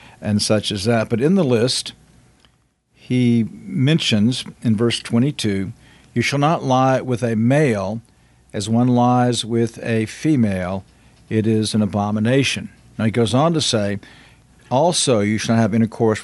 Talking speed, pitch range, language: 155 wpm, 110-125 Hz, English